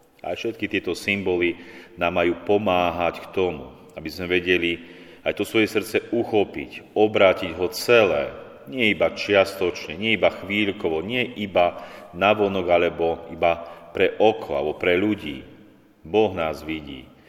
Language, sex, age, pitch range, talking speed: Slovak, male, 40-59, 85-95 Hz, 140 wpm